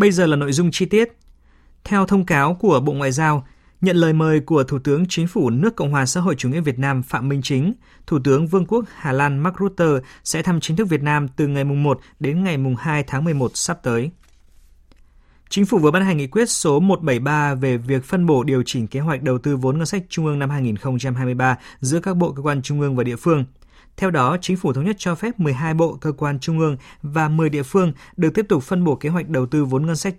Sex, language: male, Vietnamese